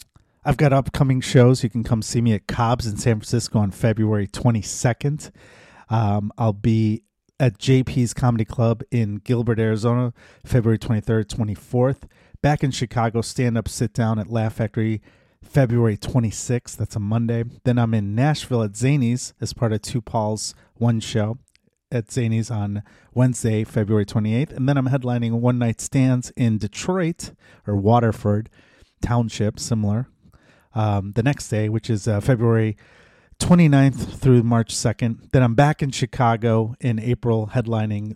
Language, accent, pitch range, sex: English, American, 105-125 Hz, male